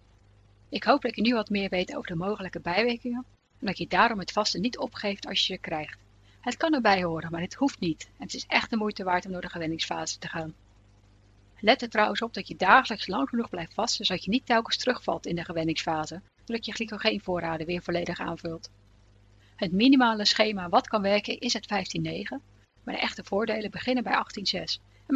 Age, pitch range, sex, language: 40-59, 170-235 Hz, female, Dutch